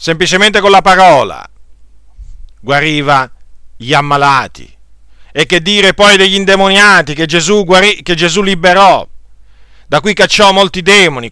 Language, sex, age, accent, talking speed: Italian, male, 40-59, native, 115 wpm